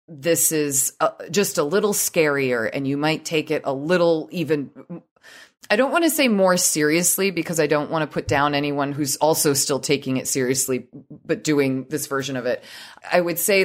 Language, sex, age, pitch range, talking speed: English, female, 30-49, 135-170 Hz, 195 wpm